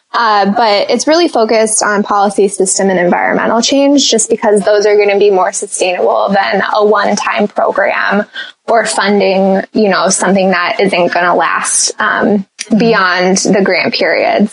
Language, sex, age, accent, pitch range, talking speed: English, female, 20-39, American, 200-230 Hz, 165 wpm